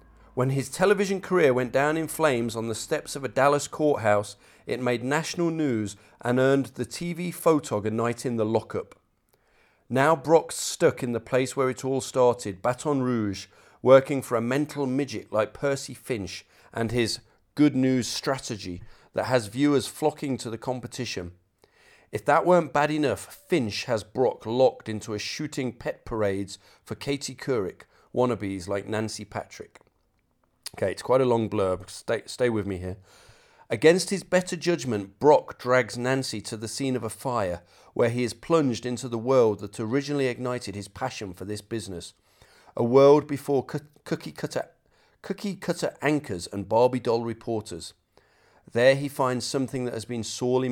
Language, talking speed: English, 165 wpm